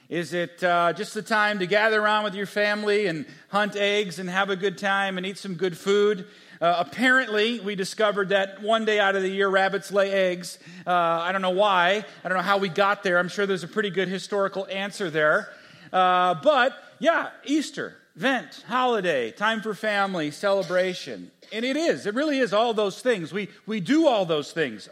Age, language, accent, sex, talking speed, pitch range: 40-59, English, American, male, 205 wpm, 190-245 Hz